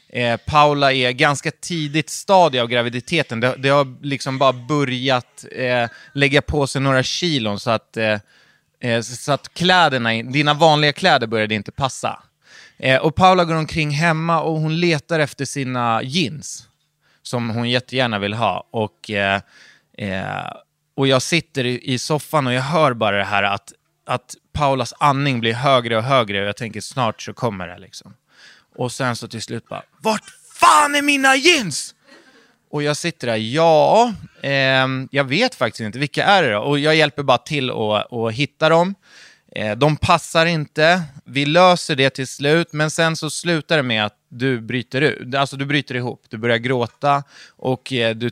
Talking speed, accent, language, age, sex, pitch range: 165 wpm, Swedish, English, 20-39, male, 115-155 Hz